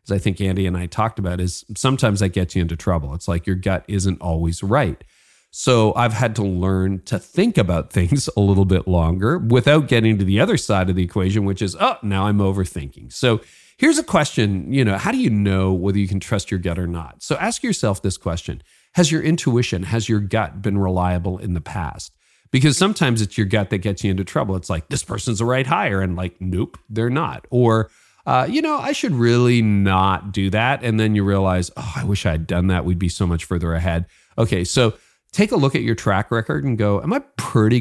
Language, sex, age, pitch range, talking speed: English, male, 40-59, 95-120 Hz, 235 wpm